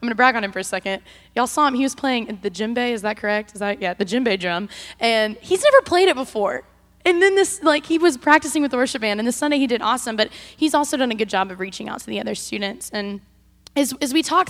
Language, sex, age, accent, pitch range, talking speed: English, female, 10-29, American, 210-275 Hz, 275 wpm